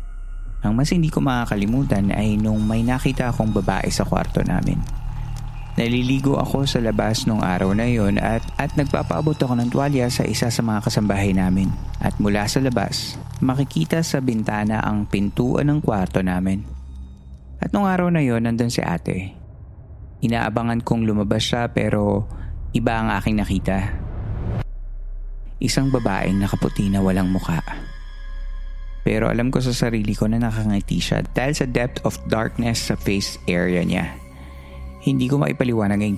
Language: Filipino